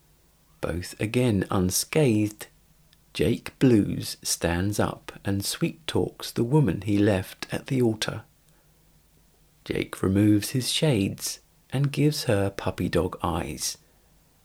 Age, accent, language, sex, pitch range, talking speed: 50-69, British, English, male, 100-145 Hz, 110 wpm